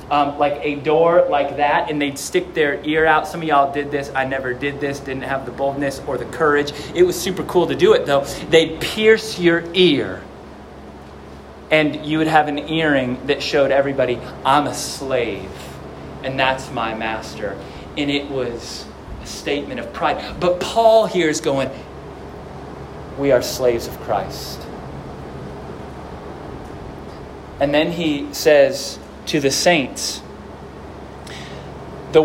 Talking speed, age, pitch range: 150 wpm, 20-39, 135-165 Hz